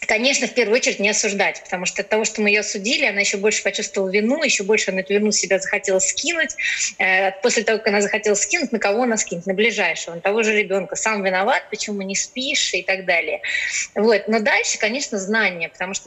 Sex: female